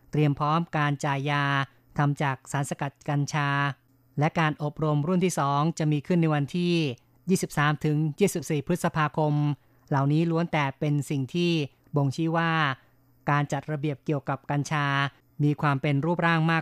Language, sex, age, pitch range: Thai, female, 20-39, 140-160 Hz